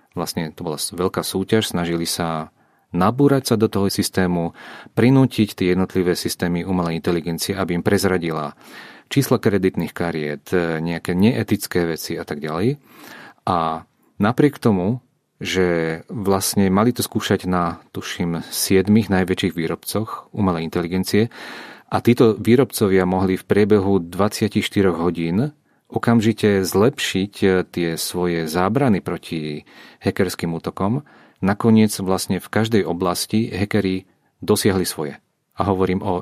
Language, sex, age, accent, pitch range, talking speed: Czech, male, 40-59, Slovak, 85-105 Hz, 120 wpm